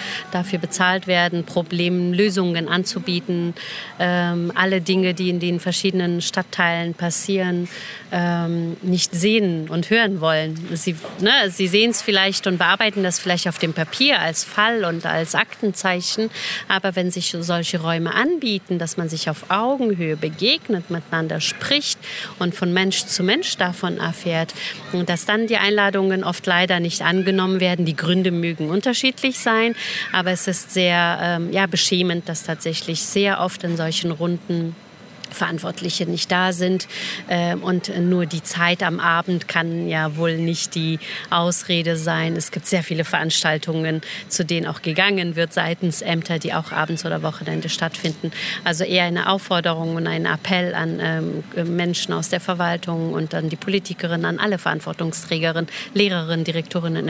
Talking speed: 150 wpm